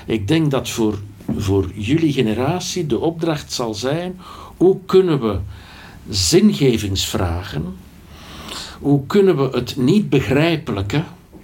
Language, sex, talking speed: Dutch, male, 110 wpm